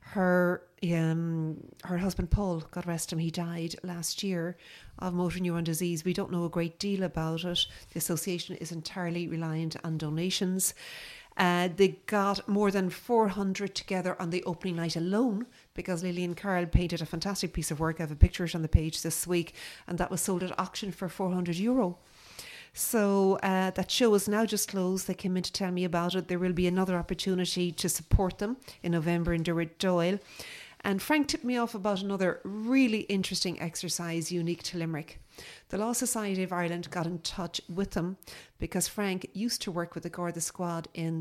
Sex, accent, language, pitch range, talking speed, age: female, Irish, English, 170-195 Hz, 200 wpm, 40-59